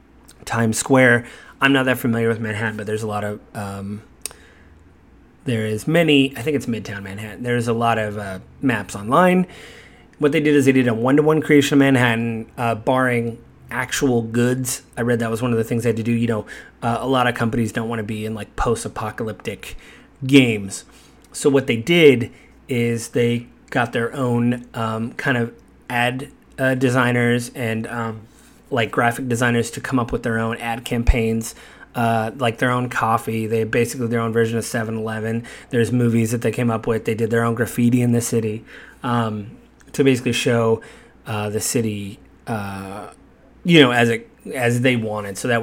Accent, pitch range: American, 110-125 Hz